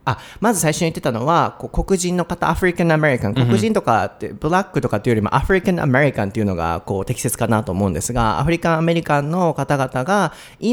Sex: male